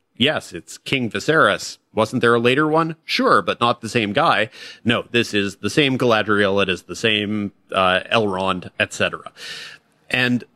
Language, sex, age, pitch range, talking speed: English, male, 30-49, 100-120 Hz, 165 wpm